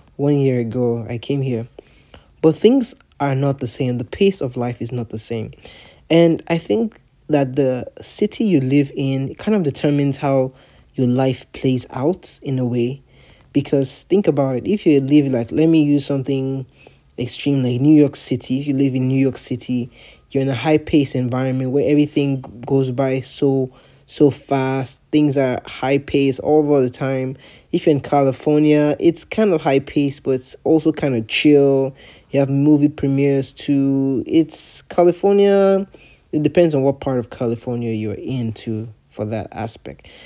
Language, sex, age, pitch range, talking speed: English, male, 20-39, 125-150 Hz, 175 wpm